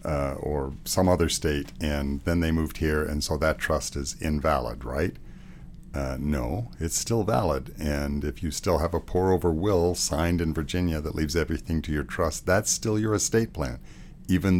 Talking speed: 190 wpm